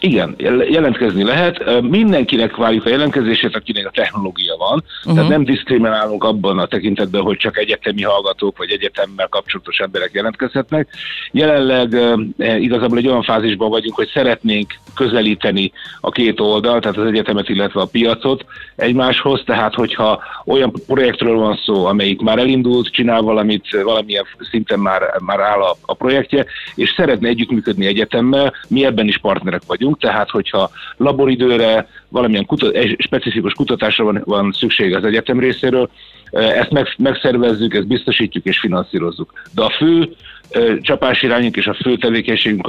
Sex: male